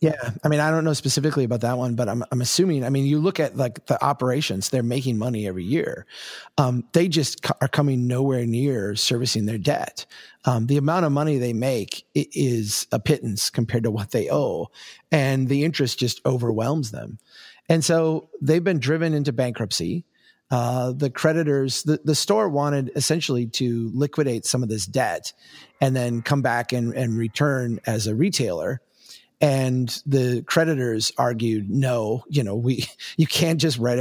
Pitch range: 120-145 Hz